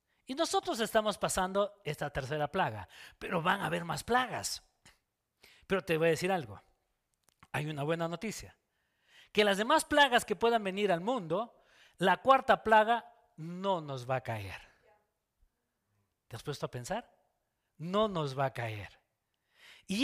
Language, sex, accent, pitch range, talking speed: Spanish, male, Mexican, 170-230 Hz, 155 wpm